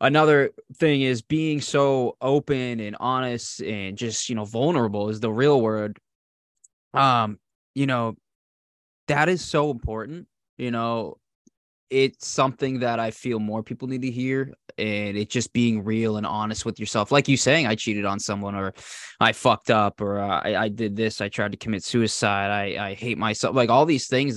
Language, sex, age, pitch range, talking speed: English, male, 20-39, 105-125 Hz, 185 wpm